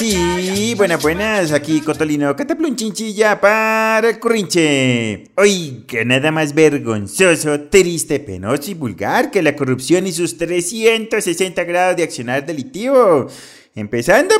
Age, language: 30-49, Spanish